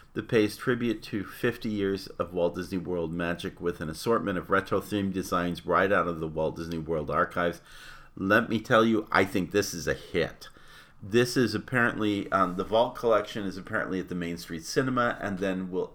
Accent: American